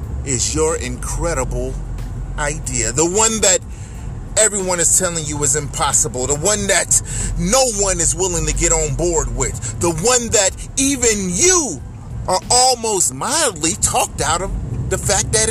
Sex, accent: male, American